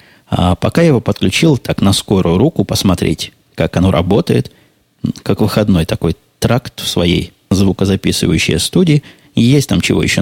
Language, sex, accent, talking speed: Russian, male, native, 145 wpm